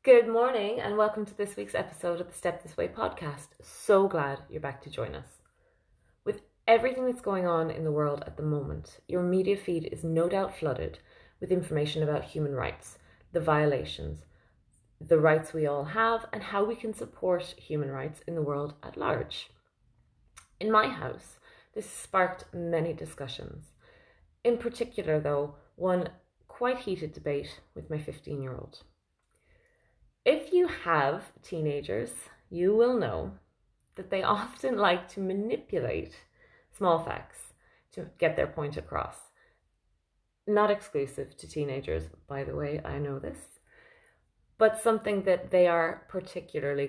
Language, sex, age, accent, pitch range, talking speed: English, female, 20-39, Irish, 150-215 Hz, 150 wpm